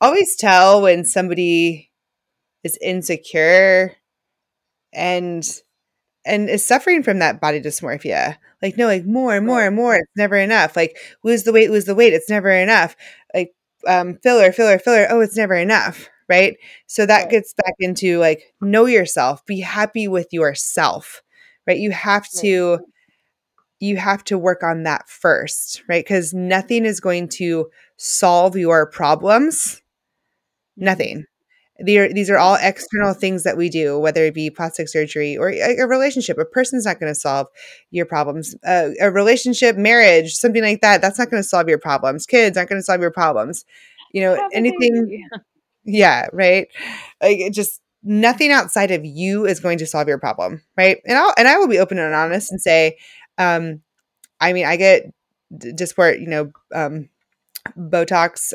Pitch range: 170-215 Hz